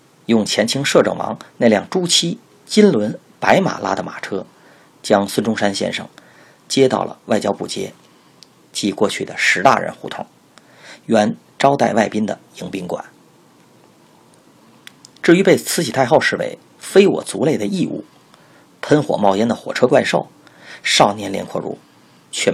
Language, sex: Chinese, male